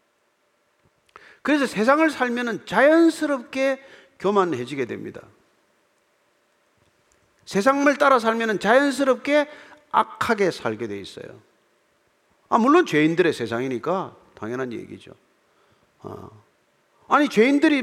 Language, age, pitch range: Korean, 40-59, 195-295 Hz